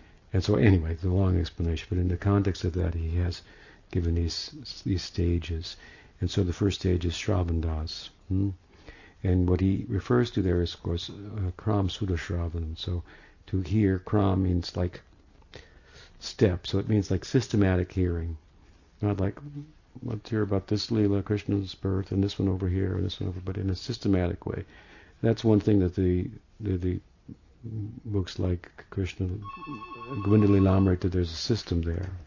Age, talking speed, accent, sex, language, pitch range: 50-69, 165 wpm, American, male, English, 90-105 Hz